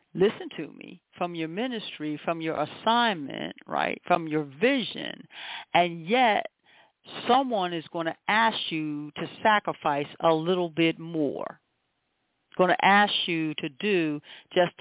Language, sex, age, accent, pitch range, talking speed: English, female, 50-69, American, 160-210 Hz, 140 wpm